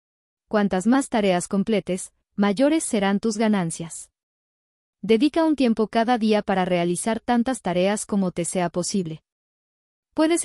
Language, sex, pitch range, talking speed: English, female, 185-230 Hz, 125 wpm